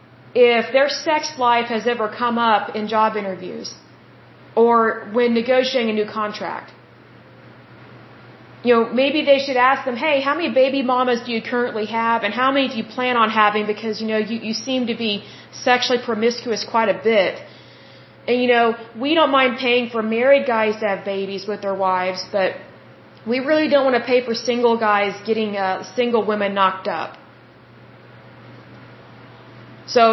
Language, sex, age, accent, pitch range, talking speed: Spanish, female, 30-49, American, 220-255 Hz, 175 wpm